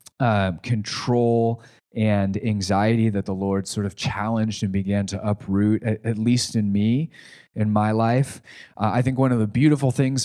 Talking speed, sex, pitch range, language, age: 175 wpm, male, 100-120 Hz, English, 30-49